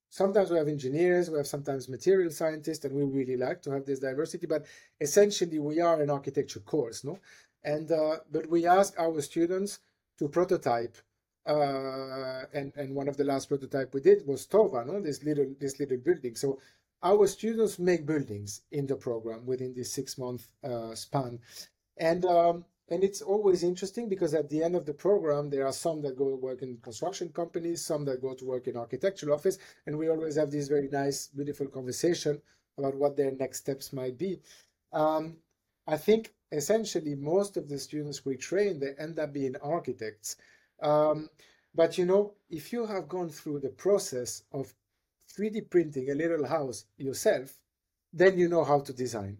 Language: English